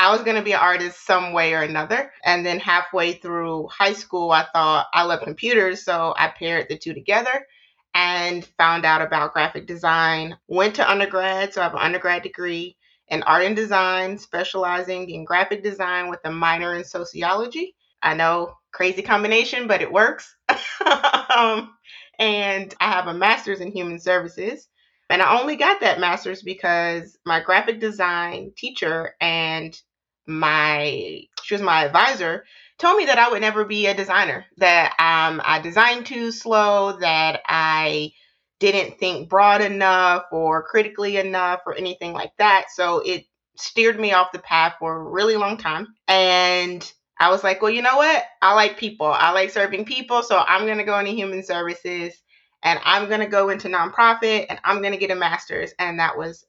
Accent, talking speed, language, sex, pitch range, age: American, 180 wpm, English, female, 170-210 Hz, 30-49